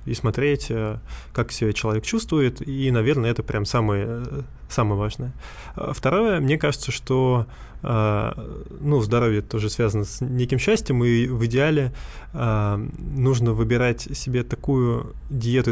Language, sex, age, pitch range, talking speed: Russian, male, 20-39, 110-135 Hz, 120 wpm